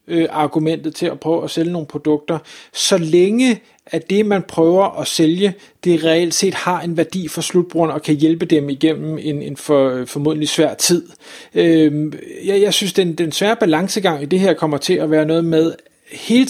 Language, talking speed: Danish, 185 wpm